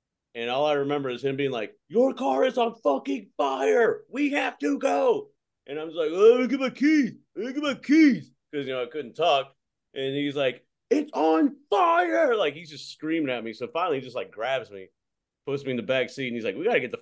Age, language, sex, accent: 30-49, English, male, American